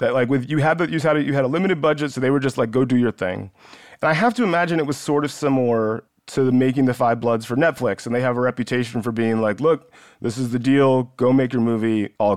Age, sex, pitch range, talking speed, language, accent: 30-49, male, 120-150 Hz, 275 wpm, English, American